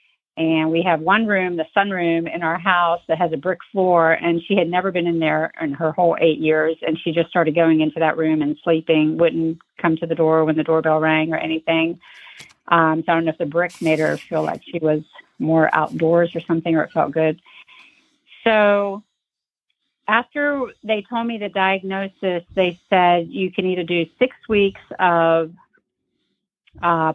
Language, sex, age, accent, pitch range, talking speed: English, female, 40-59, American, 160-195 Hz, 190 wpm